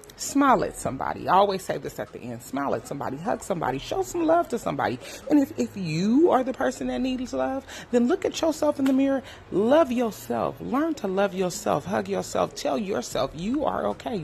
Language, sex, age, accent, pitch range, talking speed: English, female, 30-49, American, 155-230 Hz, 210 wpm